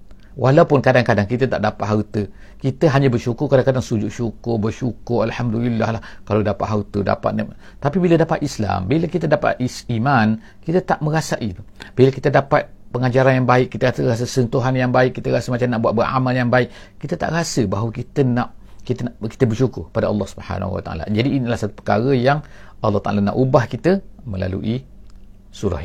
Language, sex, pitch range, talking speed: English, male, 100-130 Hz, 175 wpm